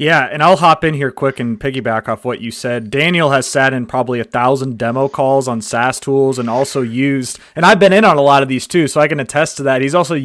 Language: English